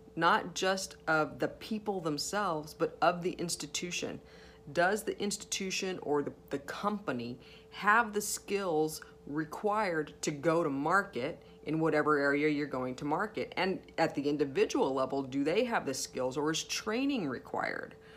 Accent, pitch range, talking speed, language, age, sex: American, 145-185 Hz, 150 wpm, English, 40-59, female